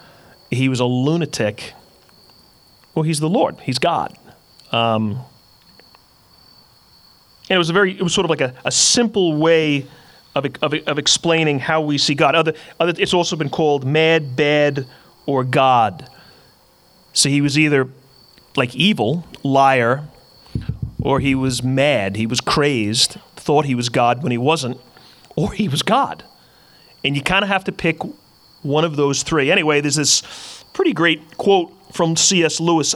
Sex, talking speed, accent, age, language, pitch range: male, 160 wpm, American, 30-49, English, 135-170 Hz